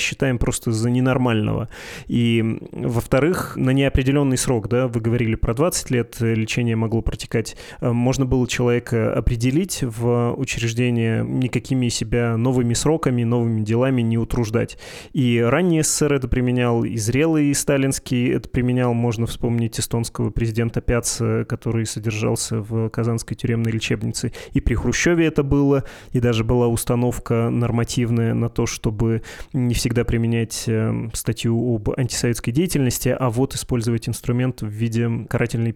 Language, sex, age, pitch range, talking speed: Russian, male, 20-39, 115-130 Hz, 135 wpm